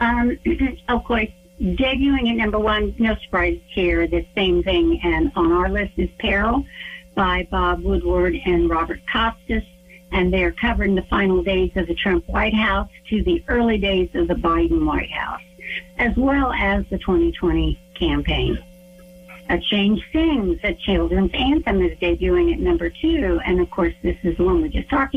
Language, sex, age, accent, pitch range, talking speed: English, female, 60-79, American, 180-245 Hz, 170 wpm